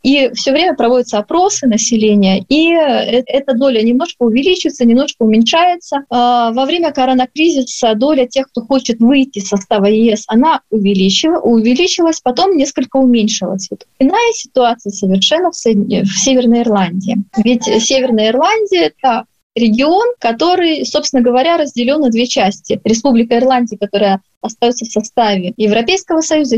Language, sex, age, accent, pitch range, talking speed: Russian, female, 20-39, native, 215-280 Hz, 130 wpm